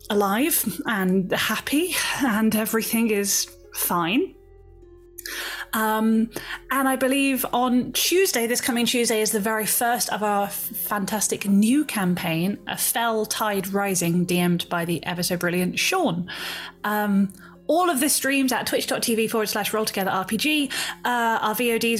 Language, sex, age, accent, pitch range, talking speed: English, female, 30-49, British, 185-240 Hz, 125 wpm